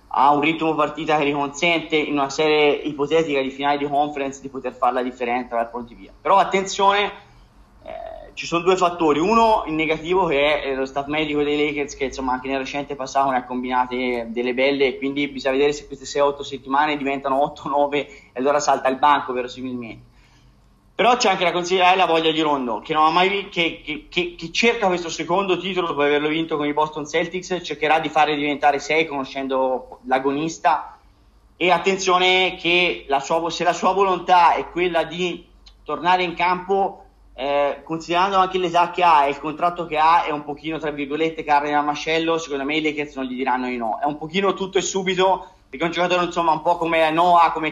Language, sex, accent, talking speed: Italian, male, native, 200 wpm